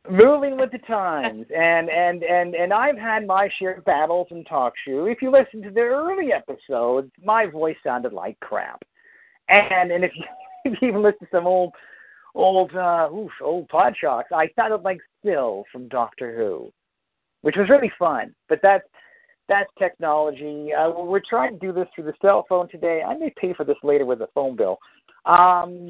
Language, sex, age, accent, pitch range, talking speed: English, male, 50-69, American, 155-240 Hz, 190 wpm